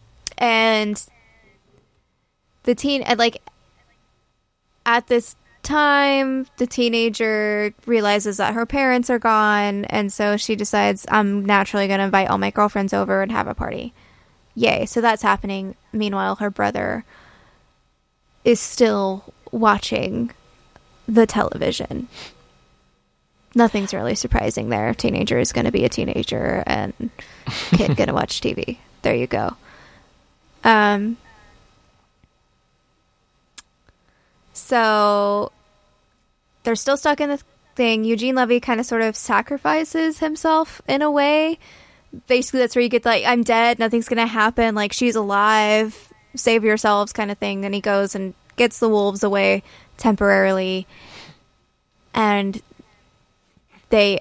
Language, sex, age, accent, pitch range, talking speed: English, female, 10-29, American, 195-235 Hz, 125 wpm